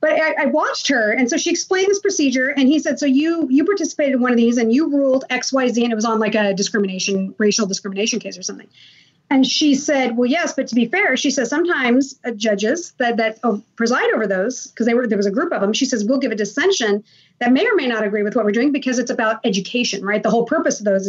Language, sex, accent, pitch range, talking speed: English, female, American, 230-315 Hz, 255 wpm